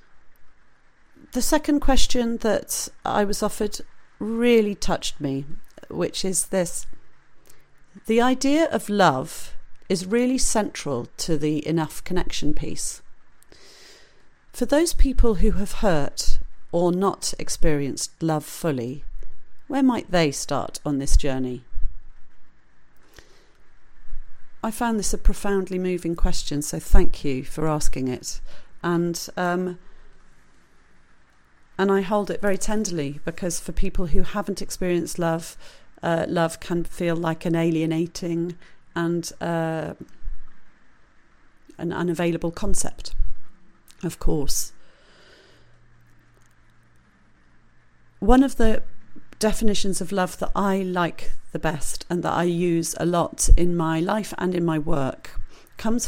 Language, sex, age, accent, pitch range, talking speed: English, female, 40-59, British, 160-205 Hz, 120 wpm